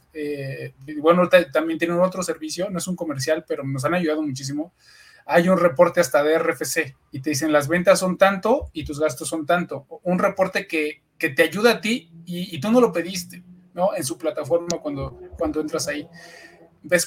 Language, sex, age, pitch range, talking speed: Spanish, male, 20-39, 150-180 Hz, 195 wpm